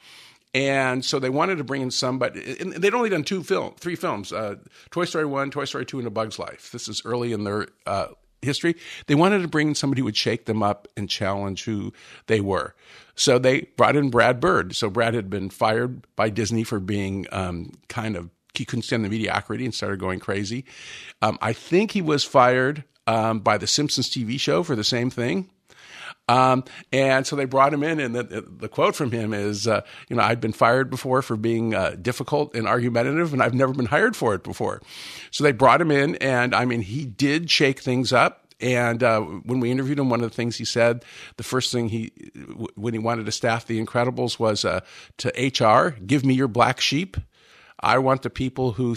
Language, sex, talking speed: English, male, 220 wpm